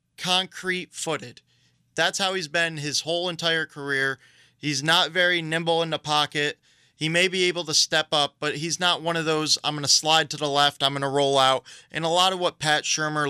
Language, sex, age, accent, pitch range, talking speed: English, male, 20-39, American, 135-165 Hz, 215 wpm